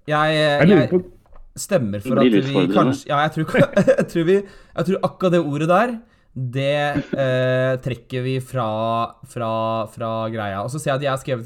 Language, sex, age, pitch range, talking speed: English, male, 20-39, 110-140 Hz, 170 wpm